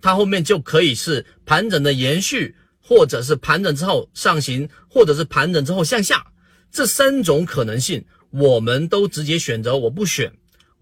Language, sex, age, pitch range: Chinese, male, 40-59, 130-190 Hz